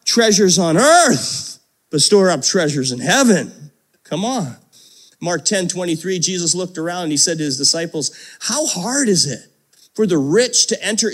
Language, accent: English, American